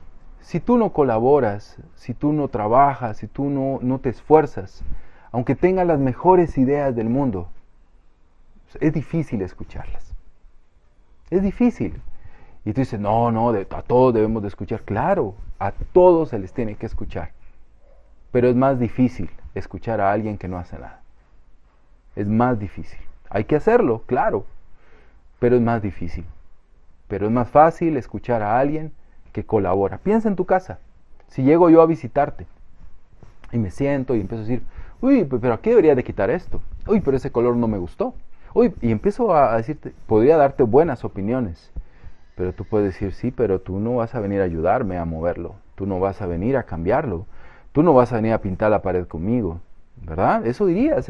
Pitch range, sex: 90-135 Hz, male